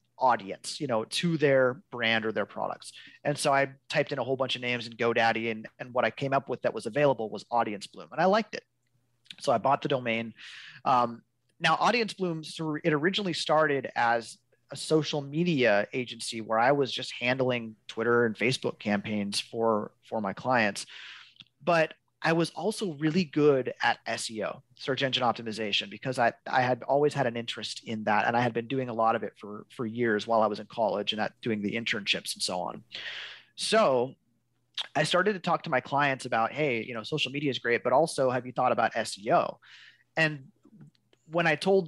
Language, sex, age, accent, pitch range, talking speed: English, male, 30-49, American, 115-150 Hz, 200 wpm